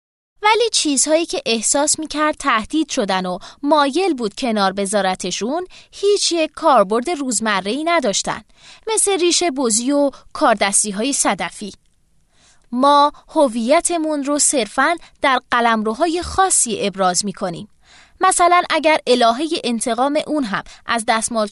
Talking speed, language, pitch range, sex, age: 115 wpm, Persian, 220-315 Hz, female, 20-39